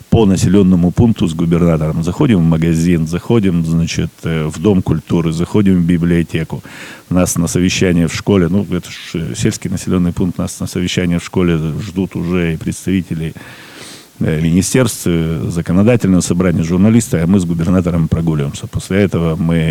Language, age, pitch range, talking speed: Russian, 40-59, 85-100 Hz, 145 wpm